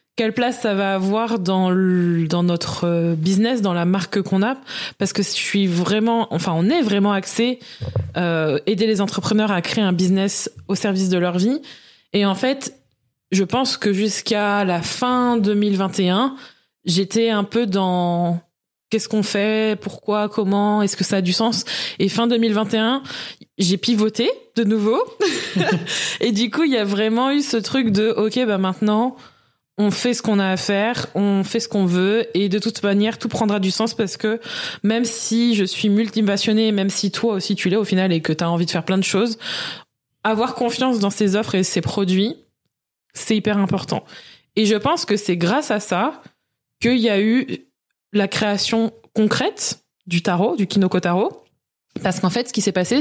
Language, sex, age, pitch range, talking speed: French, female, 20-39, 190-225 Hz, 190 wpm